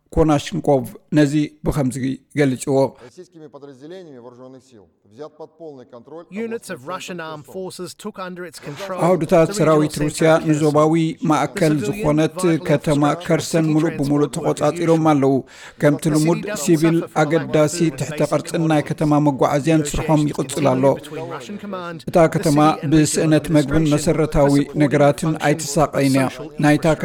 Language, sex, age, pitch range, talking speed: Amharic, male, 50-69, 145-165 Hz, 80 wpm